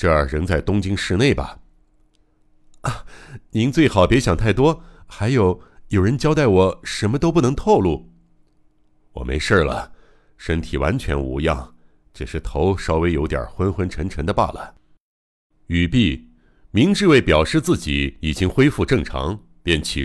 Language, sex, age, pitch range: Chinese, male, 60-79, 75-125 Hz